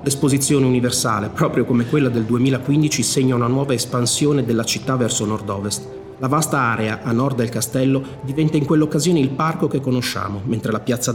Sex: male